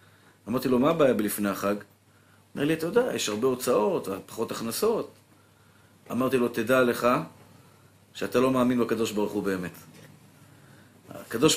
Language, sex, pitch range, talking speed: Hebrew, male, 120-170 Hz, 130 wpm